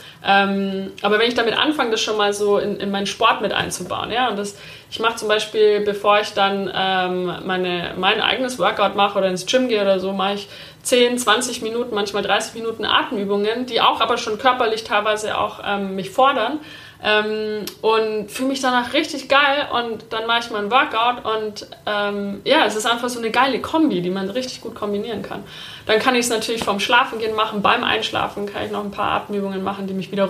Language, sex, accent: German, female, German